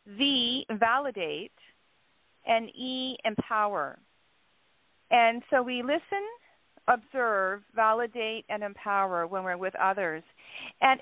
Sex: female